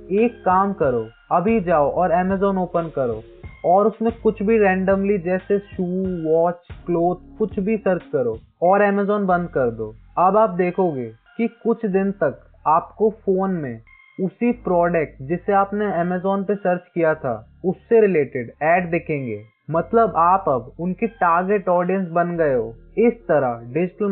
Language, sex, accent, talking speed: Hindi, male, native, 155 wpm